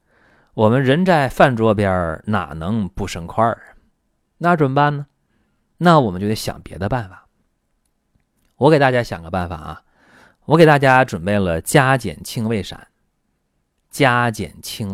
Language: Chinese